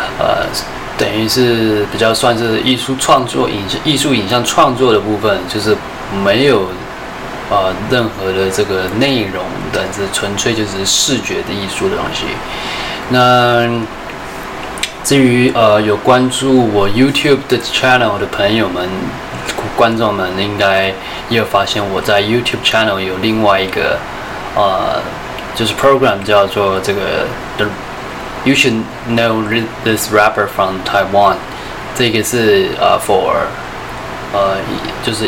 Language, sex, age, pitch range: Chinese, male, 20-39, 95-120 Hz